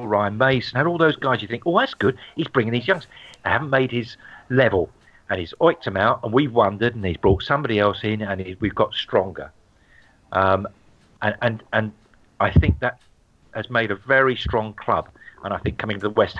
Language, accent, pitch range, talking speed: English, British, 100-125 Hz, 210 wpm